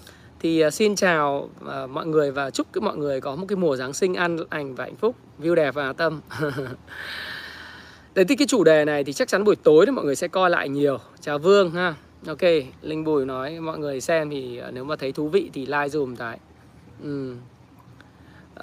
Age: 20-39